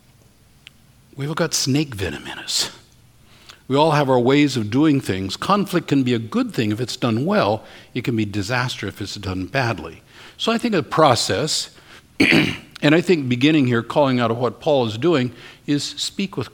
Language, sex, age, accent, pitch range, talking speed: English, male, 60-79, American, 115-150 Hz, 190 wpm